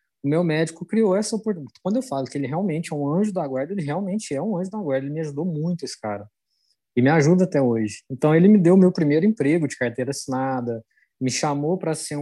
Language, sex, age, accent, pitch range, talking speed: Portuguese, male, 20-39, Brazilian, 140-185 Hz, 235 wpm